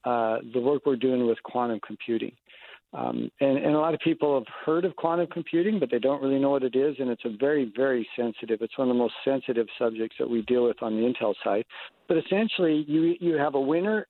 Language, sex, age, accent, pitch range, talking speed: English, male, 50-69, American, 120-150 Hz, 240 wpm